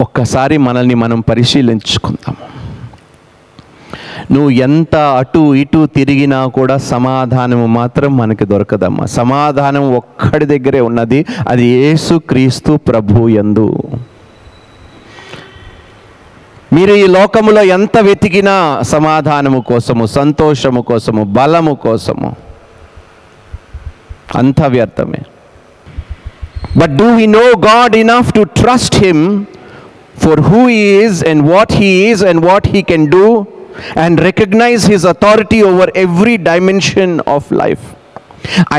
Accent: native